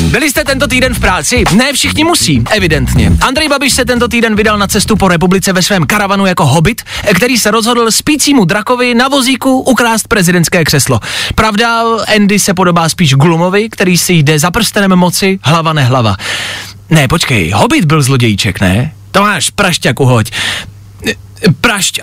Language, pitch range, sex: Czech, 135-220 Hz, male